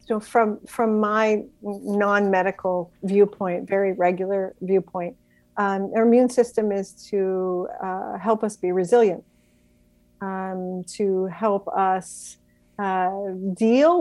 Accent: American